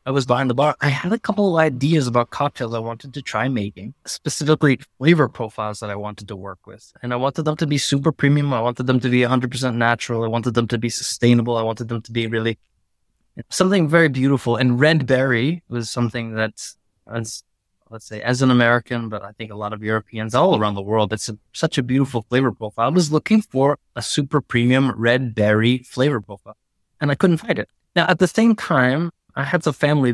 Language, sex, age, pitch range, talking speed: English, male, 20-39, 110-145 Hz, 220 wpm